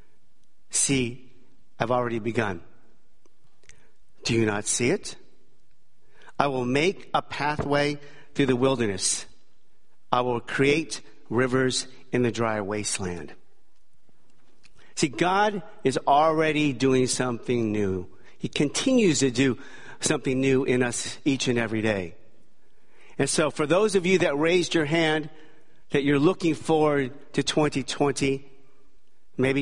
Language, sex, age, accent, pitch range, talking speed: English, male, 50-69, American, 125-155 Hz, 125 wpm